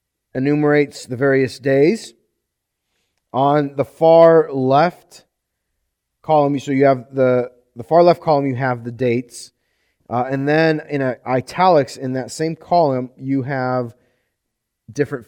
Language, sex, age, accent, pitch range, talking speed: English, male, 30-49, American, 115-145 Hz, 130 wpm